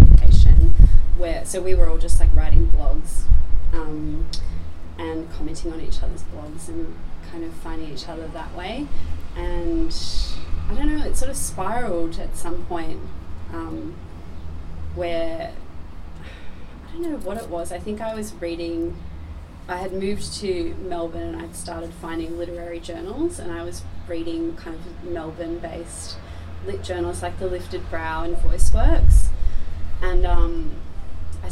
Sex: female